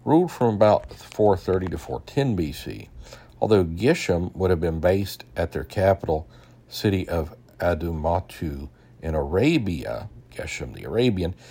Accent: American